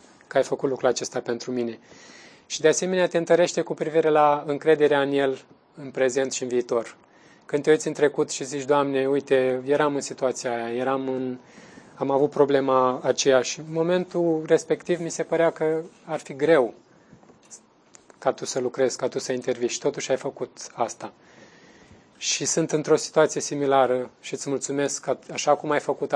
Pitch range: 135-160 Hz